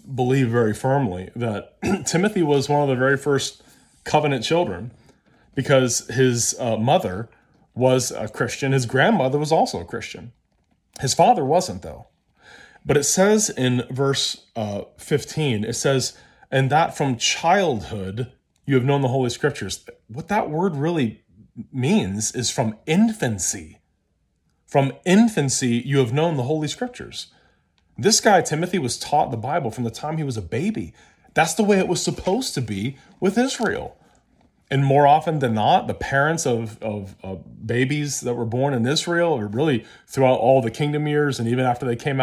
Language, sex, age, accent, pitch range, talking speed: English, male, 30-49, American, 115-150 Hz, 165 wpm